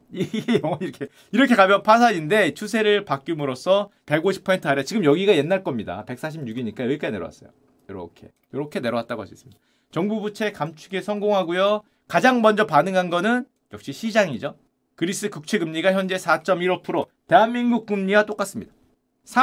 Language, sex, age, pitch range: Korean, male, 30-49, 165-235 Hz